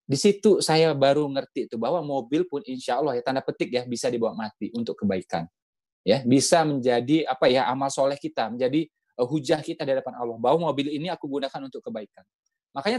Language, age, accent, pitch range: Indonesian, 20-39, native, 150-215 Hz